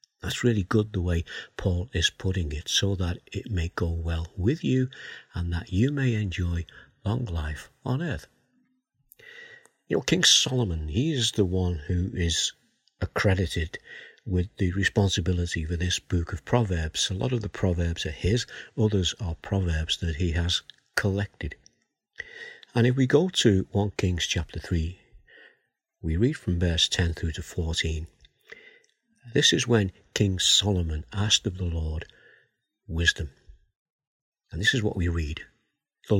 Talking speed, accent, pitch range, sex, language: 155 wpm, British, 85-115 Hz, male, English